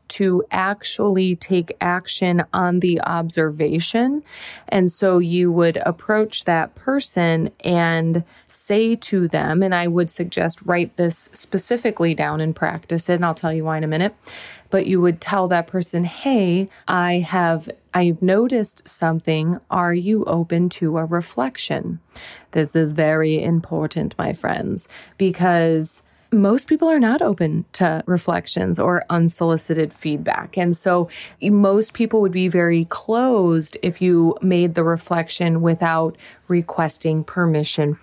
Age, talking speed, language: 30-49, 135 wpm, English